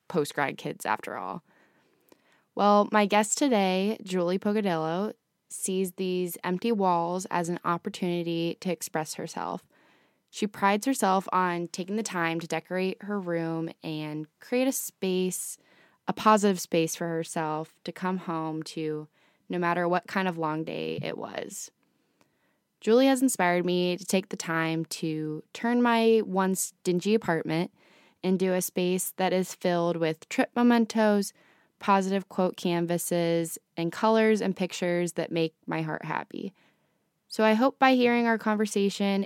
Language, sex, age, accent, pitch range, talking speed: English, female, 10-29, American, 170-210 Hz, 145 wpm